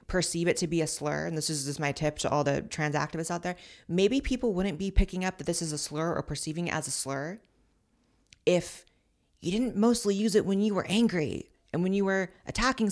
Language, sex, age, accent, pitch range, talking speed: English, female, 30-49, American, 150-205 Hz, 235 wpm